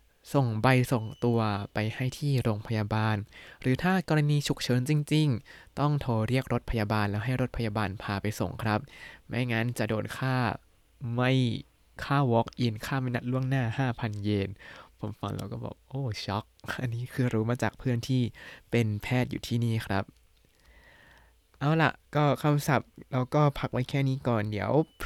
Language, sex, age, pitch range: Thai, male, 20-39, 110-140 Hz